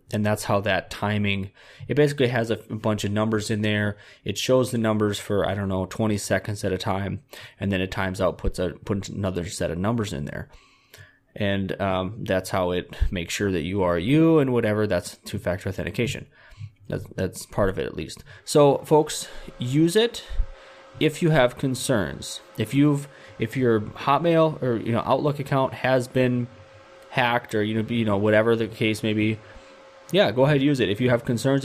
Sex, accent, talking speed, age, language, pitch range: male, American, 200 wpm, 20-39, English, 100-125 Hz